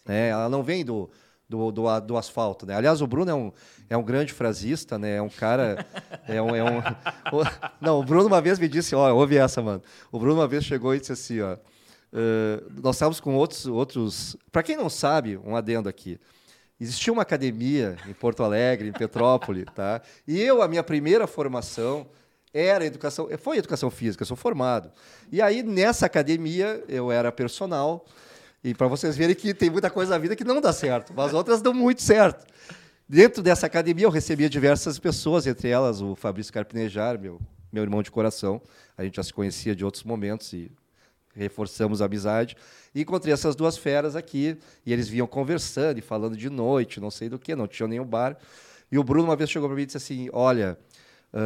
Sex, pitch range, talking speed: male, 110-155 Hz, 200 wpm